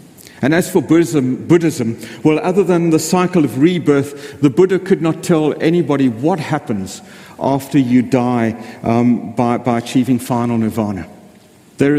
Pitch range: 130-165 Hz